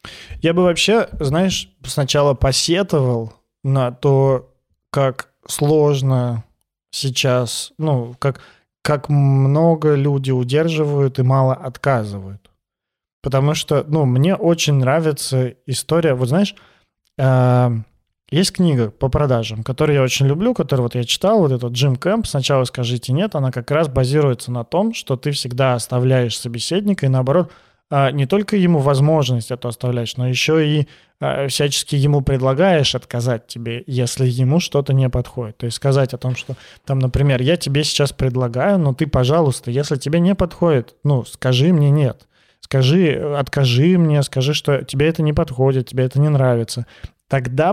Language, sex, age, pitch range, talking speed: Russian, male, 20-39, 125-150 Hz, 150 wpm